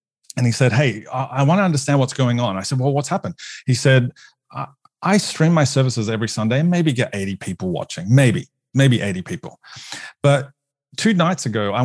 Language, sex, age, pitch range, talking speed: English, male, 30-49, 125-160 Hz, 200 wpm